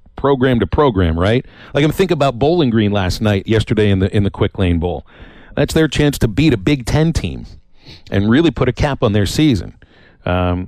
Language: English